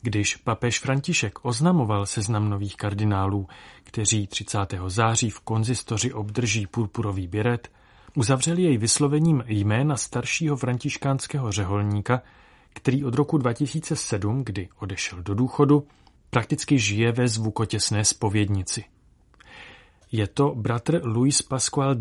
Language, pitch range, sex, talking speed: Czech, 105-130 Hz, male, 110 wpm